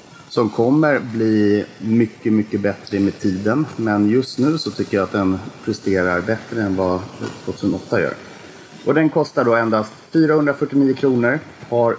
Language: English